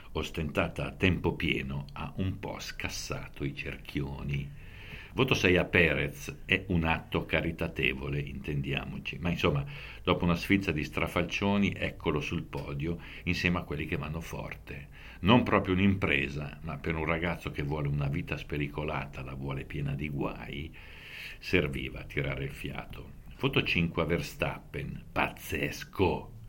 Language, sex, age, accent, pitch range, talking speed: Italian, male, 60-79, native, 70-100 Hz, 140 wpm